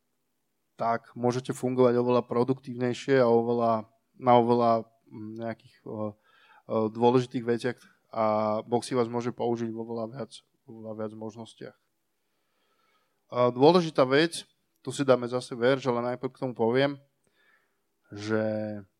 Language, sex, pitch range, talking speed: Slovak, male, 115-125 Hz, 125 wpm